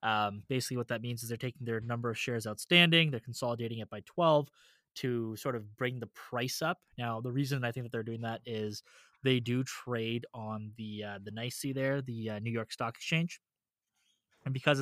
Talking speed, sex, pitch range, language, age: 210 wpm, male, 115-135 Hz, English, 20-39